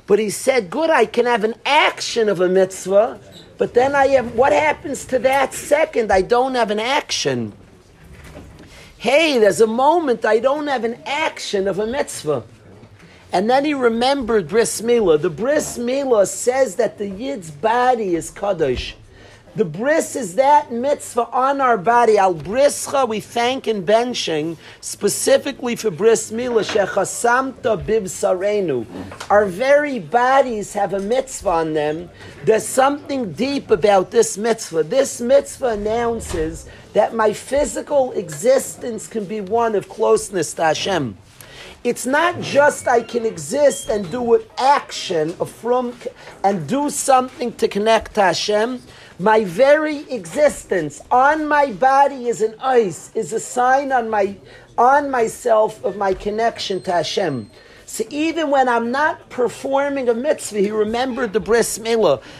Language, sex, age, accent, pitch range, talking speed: English, male, 50-69, American, 205-265 Hz, 145 wpm